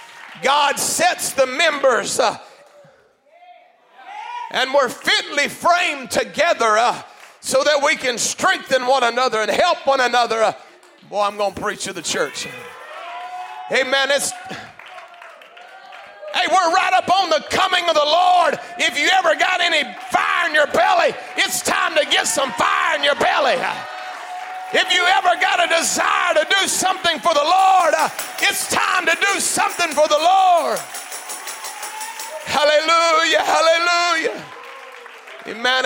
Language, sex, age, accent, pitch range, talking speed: English, male, 40-59, American, 255-350 Hz, 140 wpm